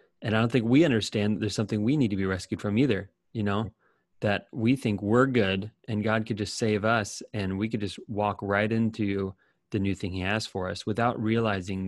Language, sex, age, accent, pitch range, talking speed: English, male, 30-49, American, 100-115 Hz, 225 wpm